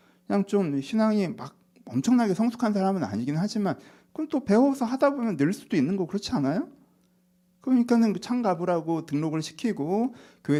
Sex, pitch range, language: male, 120-195 Hz, Korean